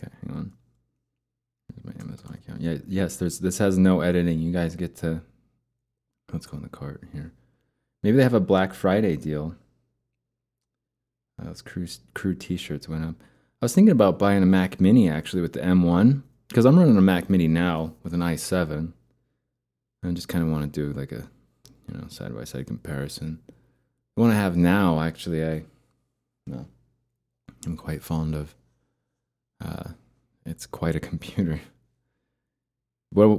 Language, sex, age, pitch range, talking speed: English, male, 20-39, 75-95 Hz, 175 wpm